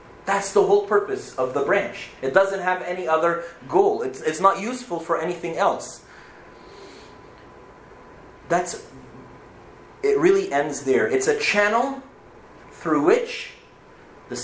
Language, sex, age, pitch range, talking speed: English, male, 30-49, 150-245 Hz, 130 wpm